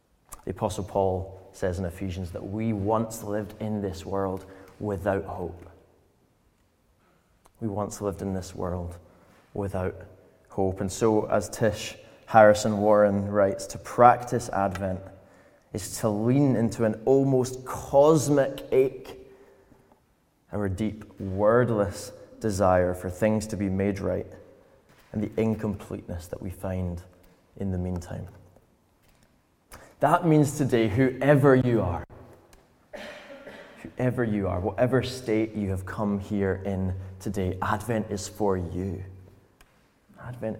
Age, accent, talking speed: 20-39, British, 120 wpm